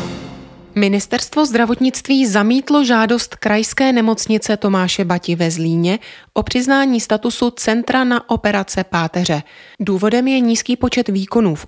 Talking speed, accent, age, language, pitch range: 120 wpm, native, 30-49, Czech, 180-235 Hz